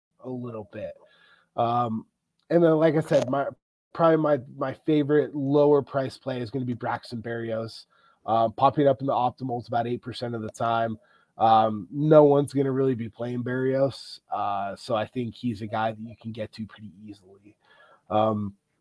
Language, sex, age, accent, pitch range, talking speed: English, male, 20-39, American, 125-150 Hz, 190 wpm